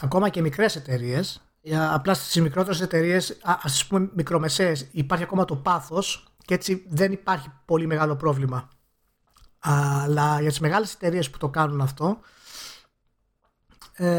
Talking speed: 135 wpm